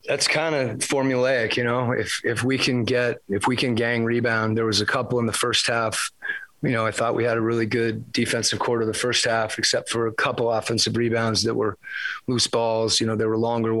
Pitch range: 110-120 Hz